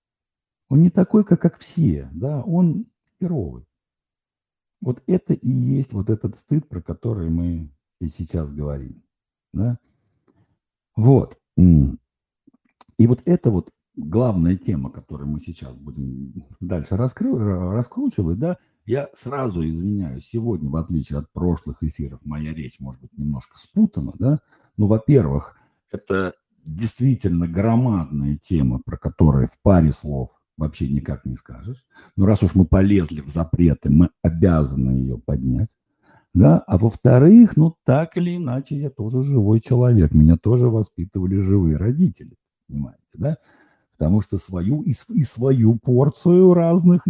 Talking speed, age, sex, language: 135 wpm, 60-79, male, Russian